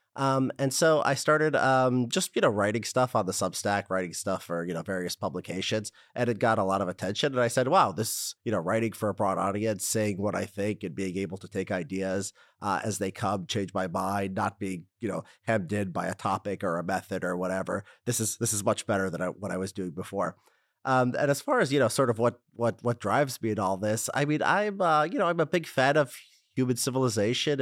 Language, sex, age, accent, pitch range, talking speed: English, male, 30-49, American, 95-120 Hz, 250 wpm